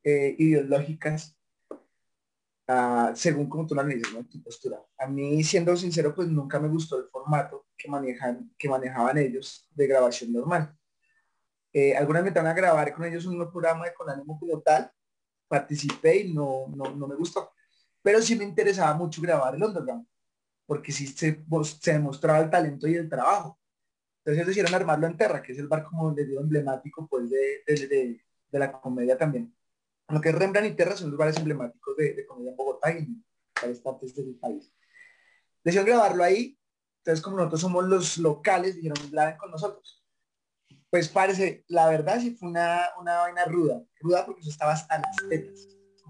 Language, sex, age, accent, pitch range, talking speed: Spanish, male, 30-49, Colombian, 145-185 Hz, 180 wpm